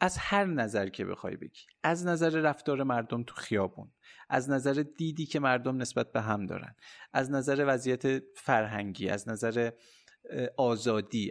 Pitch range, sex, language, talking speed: 115-165 Hz, male, Persian, 150 wpm